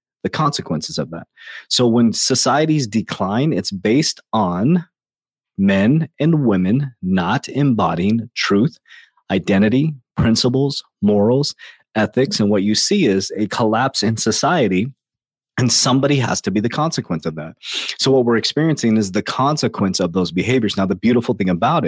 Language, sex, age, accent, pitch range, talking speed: English, male, 30-49, American, 110-150 Hz, 150 wpm